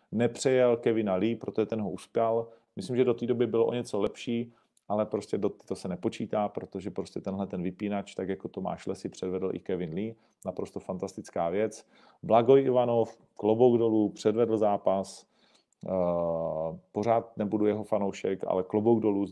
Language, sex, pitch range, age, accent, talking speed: Czech, male, 95-115 Hz, 40-59, native, 160 wpm